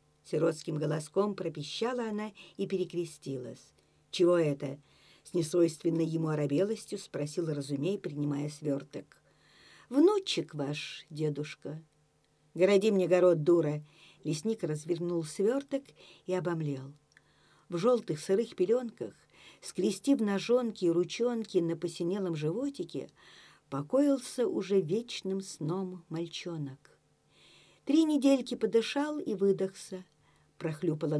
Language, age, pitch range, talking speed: Russian, 50-69, 155-205 Hz, 95 wpm